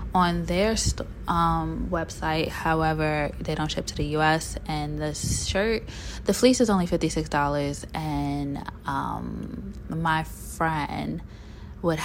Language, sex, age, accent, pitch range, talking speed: English, female, 20-39, American, 150-200 Hz, 120 wpm